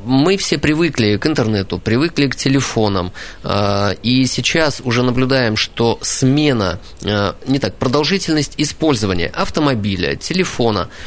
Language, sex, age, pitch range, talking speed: Russian, male, 20-39, 105-130 Hz, 120 wpm